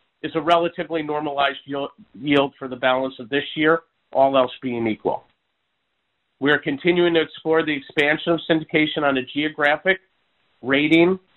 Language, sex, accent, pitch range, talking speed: English, male, American, 135-160 Hz, 150 wpm